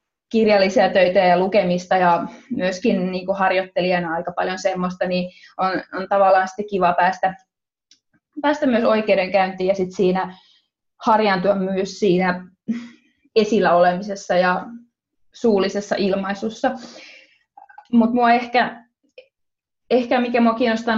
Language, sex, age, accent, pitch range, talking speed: Finnish, female, 20-39, native, 190-225 Hz, 110 wpm